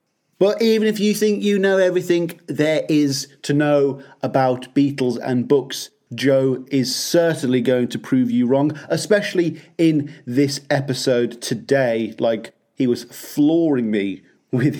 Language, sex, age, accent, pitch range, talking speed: English, male, 40-59, British, 130-155 Hz, 140 wpm